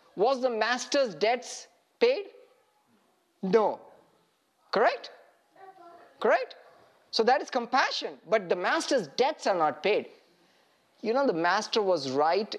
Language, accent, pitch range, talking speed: English, Indian, 205-305 Hz, 120 wpm